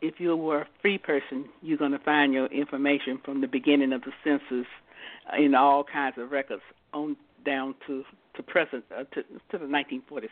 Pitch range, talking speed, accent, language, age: 135-160 Hz, 190 wpm, American, English, 60-79